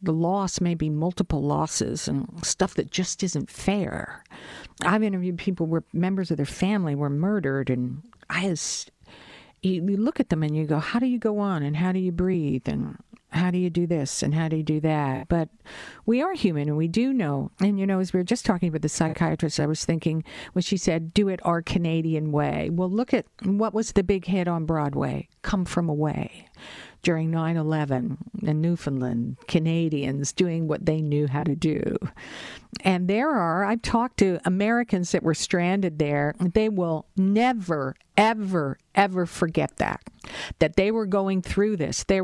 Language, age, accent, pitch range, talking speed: English, 50-69, American, 155-195 Hz, 190 wpm